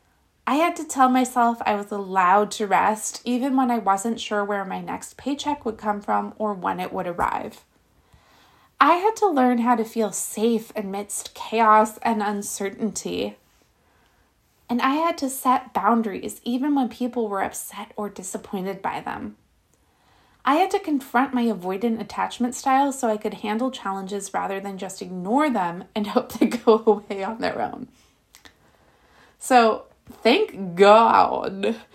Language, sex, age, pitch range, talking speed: English, female, 20-39, 195-245 Hz, 155 wpm